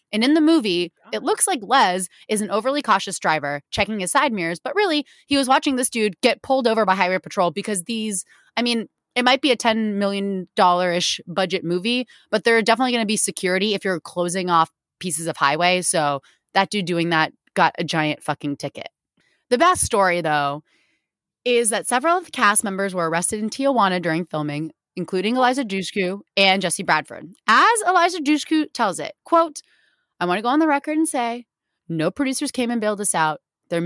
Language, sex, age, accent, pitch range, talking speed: English, female, 20-39, American, 180-270 Hz, 200 wpm